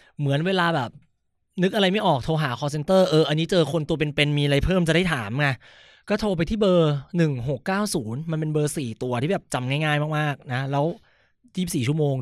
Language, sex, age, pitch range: Thai, male, 20-39, 145-205 Hz